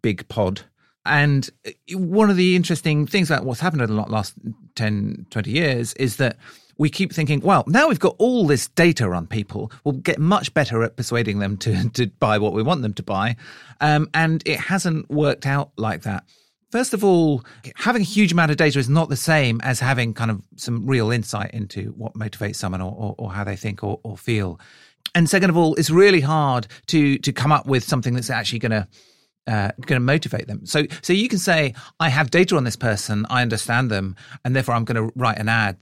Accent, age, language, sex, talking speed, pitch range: British, 40-59, English, male, 220 wpm, 115-160 Hz